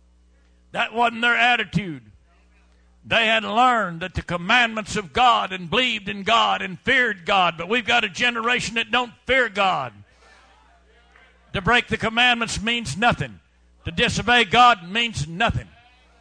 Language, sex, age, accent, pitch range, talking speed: English, male, 60-79, American, 185-245 Hz, 145 wpm